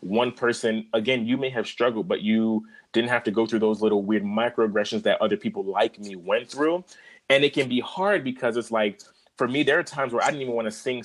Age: 30-49